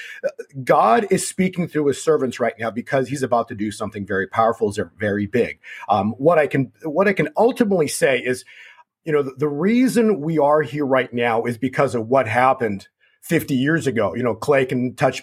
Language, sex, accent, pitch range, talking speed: English, male, American, 125-195 Hz, 200 wpm